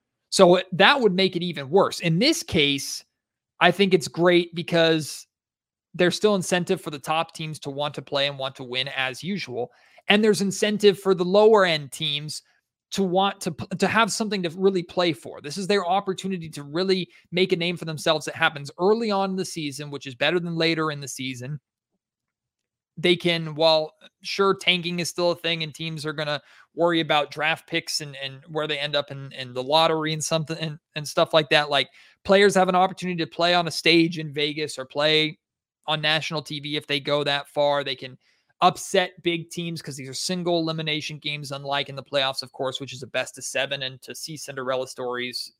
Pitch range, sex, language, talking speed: 145-180 Hz, male, English, 210 wpm